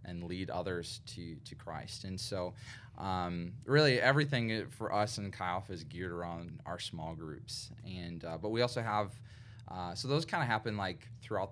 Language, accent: English, American